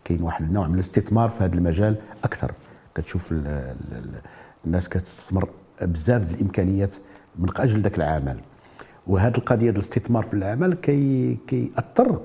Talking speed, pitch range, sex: 135 wpm, 95-125 Hz, male